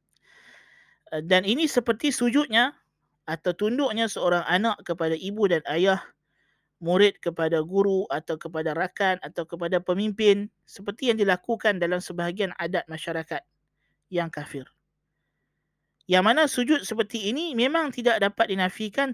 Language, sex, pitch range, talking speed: Malay, male, 165-225 Hz, 120 wpm